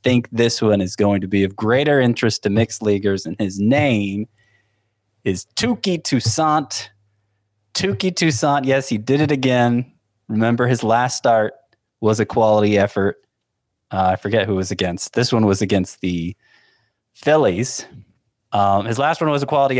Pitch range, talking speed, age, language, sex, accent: 100-130 Hz, 160 wpm, 20-39, English, male, American